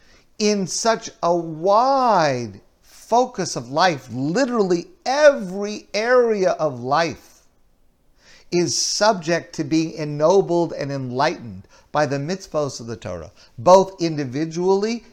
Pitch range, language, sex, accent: 135-190 Hz, English, male, American